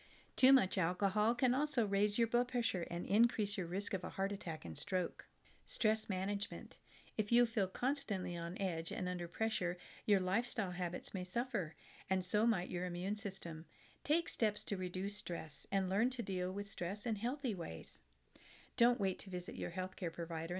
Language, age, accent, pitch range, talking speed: English, 50-69, American, 175-230 Hz, 180 wpm